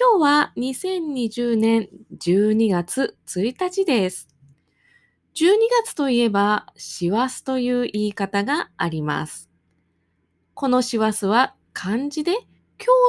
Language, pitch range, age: Japanese, 195-300 Hz, 20-39